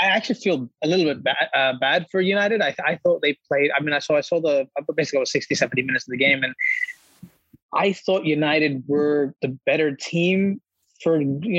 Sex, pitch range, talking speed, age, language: male, 145-175 Hz, 215 wpm, 20-39, English